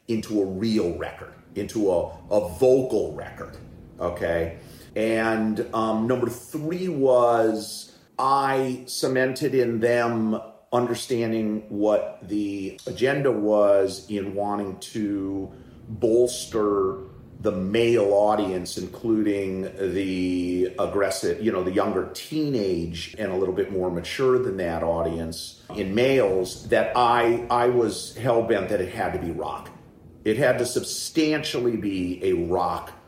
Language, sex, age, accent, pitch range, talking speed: English, male, 40-59, American, 95-120 Hz, 125 wpm